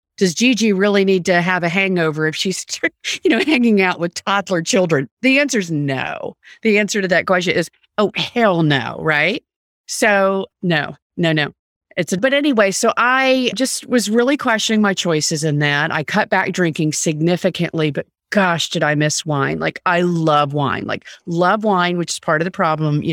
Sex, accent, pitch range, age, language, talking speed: female, American, 170-230 Hz, 40-59, English, 190 wpm